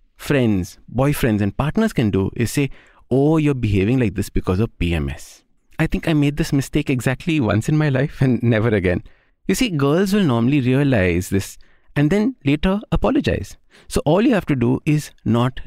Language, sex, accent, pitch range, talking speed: English, male, Indian, 105-155 Hz, 190 wpm